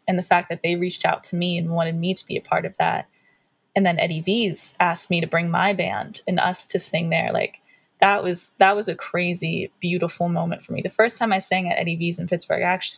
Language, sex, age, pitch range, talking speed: English, female, 20-39, 170-195 Hz, 260 wpm